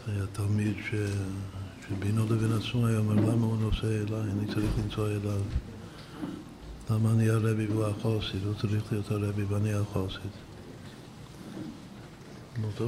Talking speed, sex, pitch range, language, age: 130 wpm, male, 105-115 Hz, Hebrew, 60-79